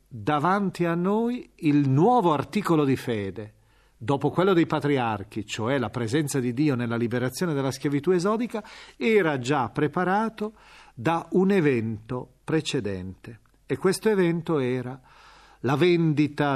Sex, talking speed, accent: male, 125 wpm, native